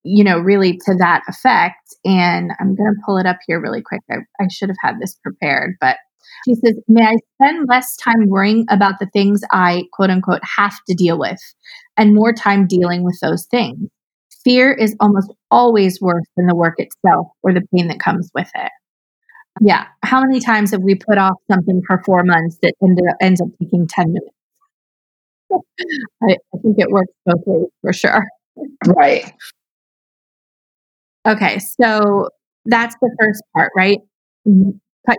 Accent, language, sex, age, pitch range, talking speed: American, English, female, 20-39, 185-225 Hz, 170 wpm